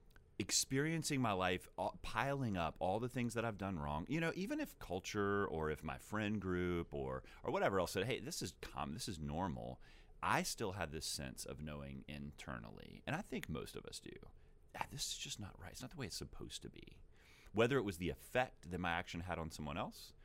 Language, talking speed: English, 220 wpm